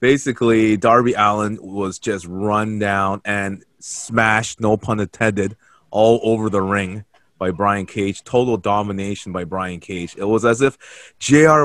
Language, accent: English, American